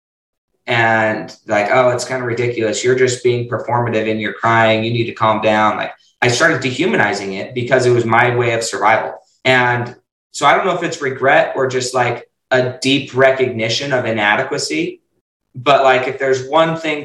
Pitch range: 110-130 Hz